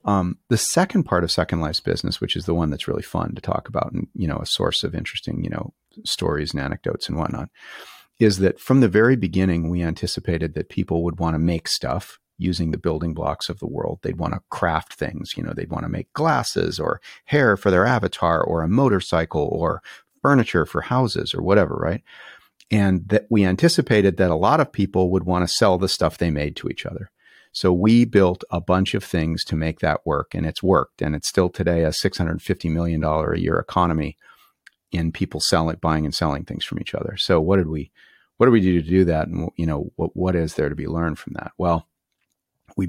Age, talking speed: 40-59, 225 wpm